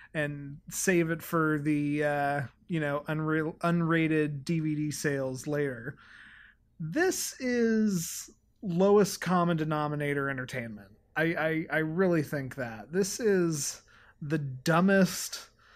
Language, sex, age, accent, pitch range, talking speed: English, male, 30-49, American, 135-185 Hz, 110 wpm